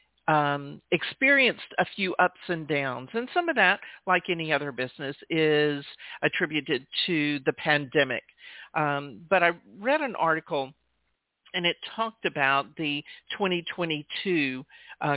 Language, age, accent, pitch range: English, 50-69, American, 150-195 Hz